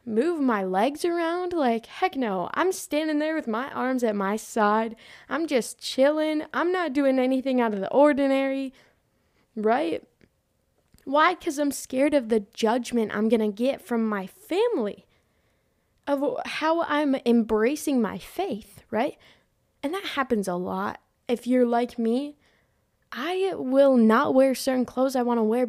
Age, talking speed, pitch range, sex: 10-29, 155 wpm, 225-295 Hz, female